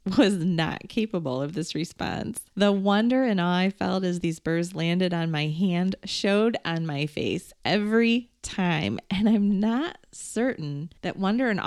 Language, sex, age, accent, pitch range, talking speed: English, female, 30-49, American, 175-230 Hz, 165 wpm